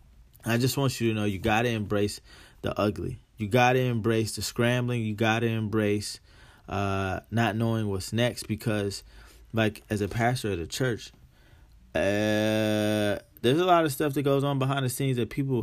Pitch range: 105-125 Hz